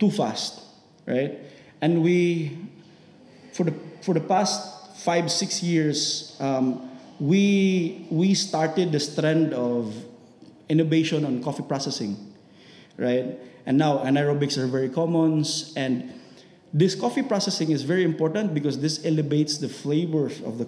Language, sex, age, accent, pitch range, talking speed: English, male, 20-39, Filipino, 135-185 Hz, 130 wpm